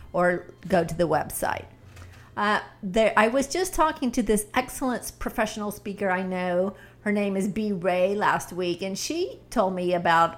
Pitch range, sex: 175-230 Hz, female